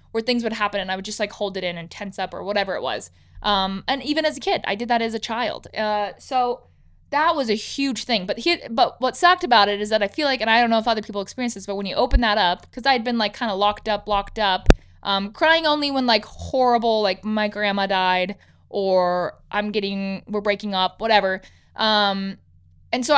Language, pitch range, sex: English, 205-260 Hz, female